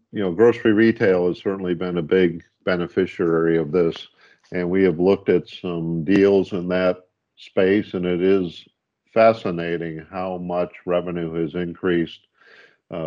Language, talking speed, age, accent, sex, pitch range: English, 145 wpm, 50-69, American, male, 85-95 Hz